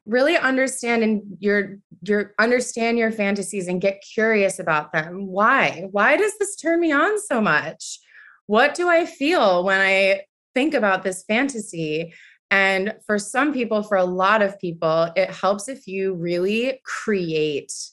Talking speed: 155 wpm